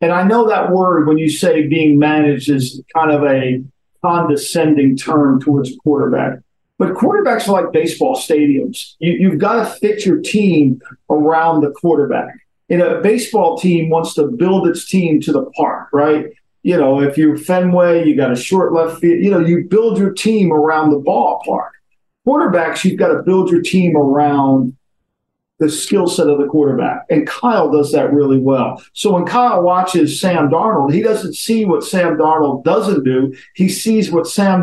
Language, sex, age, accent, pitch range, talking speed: English, male, 50-69, American, 150-185 Hz, 185 wpm